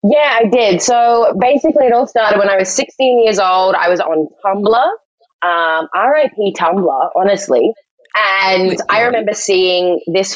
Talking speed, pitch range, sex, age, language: 155 wpm, 160-205 Hz, female, 20-39, English